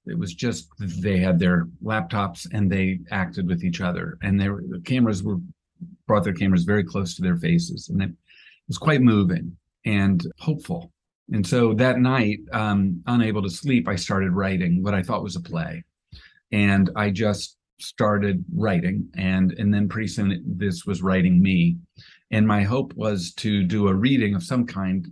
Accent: American